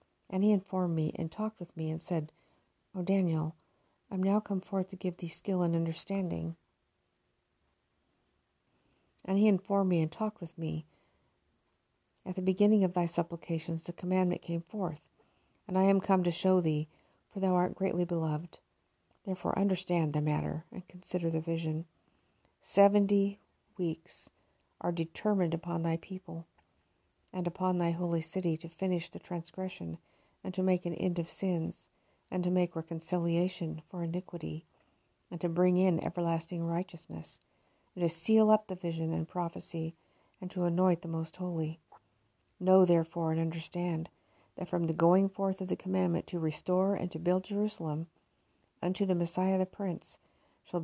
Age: 50-69